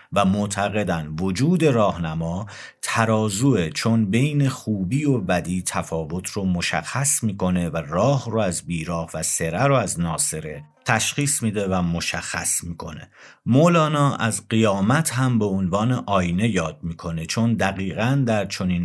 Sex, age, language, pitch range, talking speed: male, 50-69, Persian, 85-125 Hz, 135 wpm